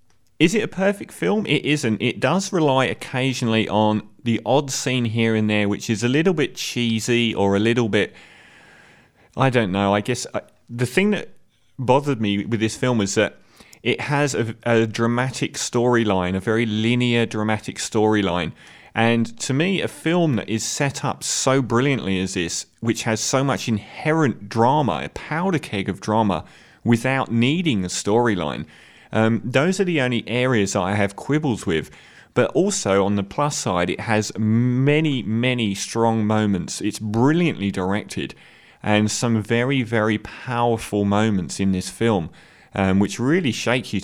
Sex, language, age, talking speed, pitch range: male, English, 30-49, 165 wpm, 100-125 Hz